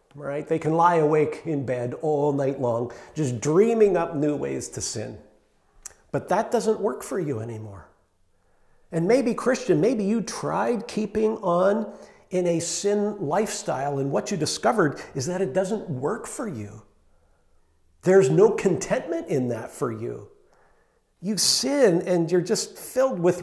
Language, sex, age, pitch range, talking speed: English, male, 50-69, 150-220 Hz, 155 wpm